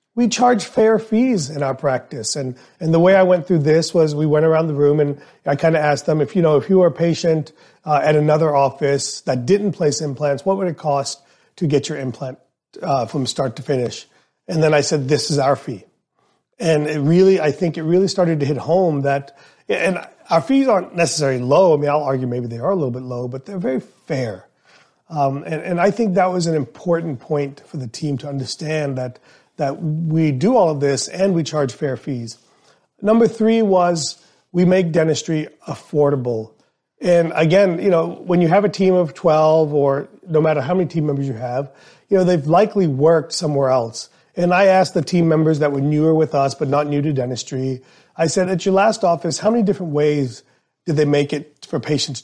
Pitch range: 140-180 Hz